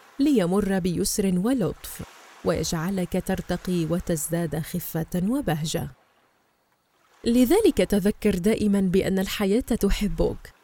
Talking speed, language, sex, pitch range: 80 wpm, Arabic, female, 185-235 Hz